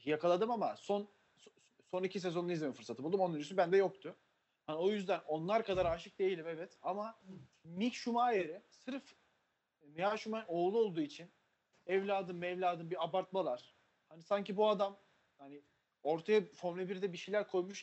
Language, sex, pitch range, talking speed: Turkish, male, 165-195 Hz, 155 wpm